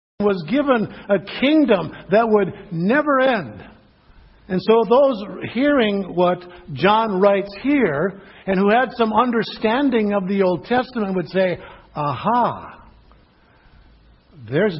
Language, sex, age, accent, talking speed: English, male, 60-79, American, 120 wpm